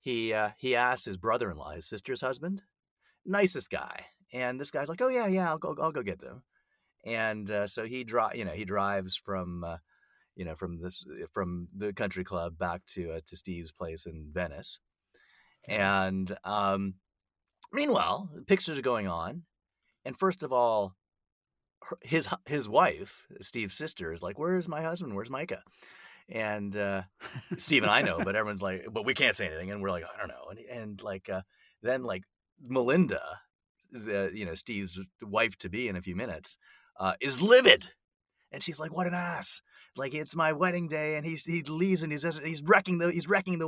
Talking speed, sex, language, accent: 190 wpm, male, English, American